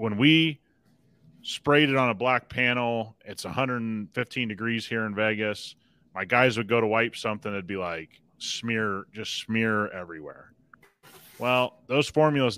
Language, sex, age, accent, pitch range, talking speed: English, male, 30-49, American, 100-120 Hz, 150 wpm